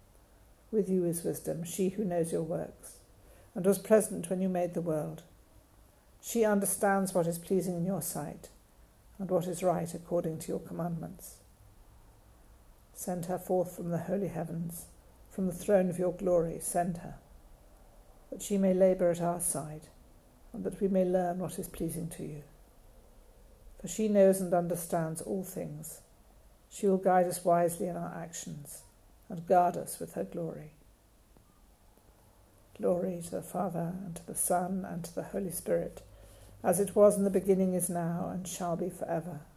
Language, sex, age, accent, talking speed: English, female, 60-79, British, 170 wpm